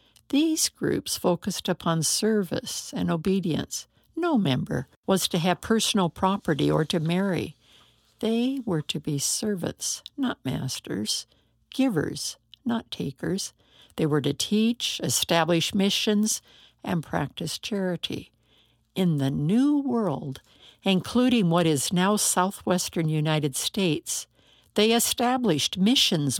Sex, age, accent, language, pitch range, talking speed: female, 60-79, American, English, 165-220 Hz, 115 wpm